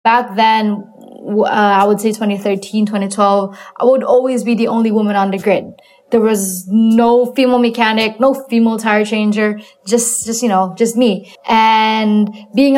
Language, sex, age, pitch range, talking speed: English, female, 20-39, 195-230 Hz, 165 wpm